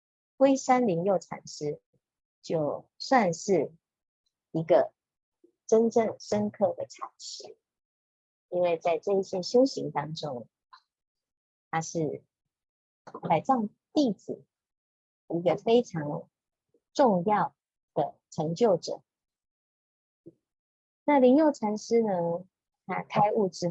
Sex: male